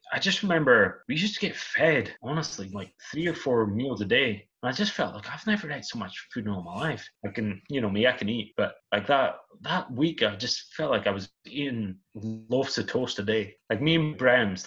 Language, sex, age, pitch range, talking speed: English, male, 20-39, 105-130 Hz, 245 wpm